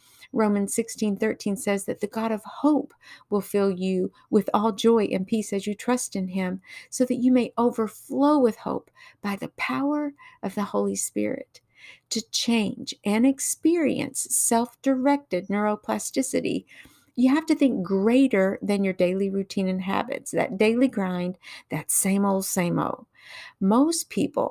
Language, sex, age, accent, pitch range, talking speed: English, female, 50-69, American, 200-250 Hz, 155 wpm